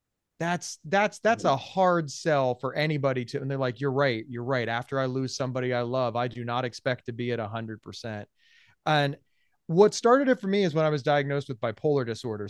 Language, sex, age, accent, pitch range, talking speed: English, male, 30-49, American, 130-185 Hz, 220 wpm